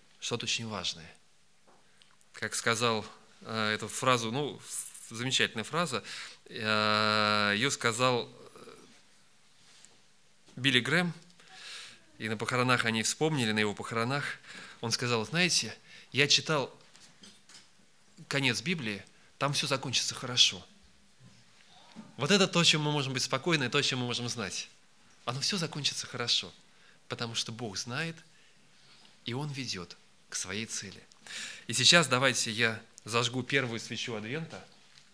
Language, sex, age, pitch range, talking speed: Russian, male, 20-39, 110-140 Hz, 125 wpm